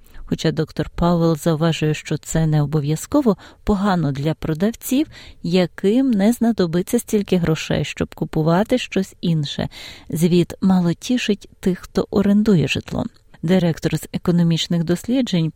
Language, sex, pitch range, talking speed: Ukrainian, female, 155-200 Hz, 120 wpm